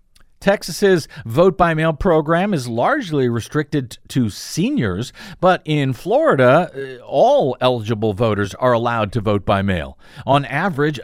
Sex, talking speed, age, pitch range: male, 130 wpm, 50-69, 120-170 Hz